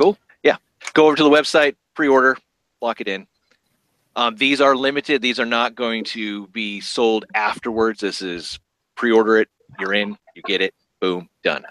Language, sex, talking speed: English, male, 175 wpm